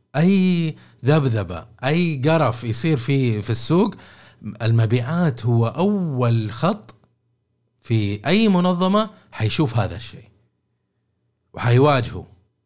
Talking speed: 90 wpm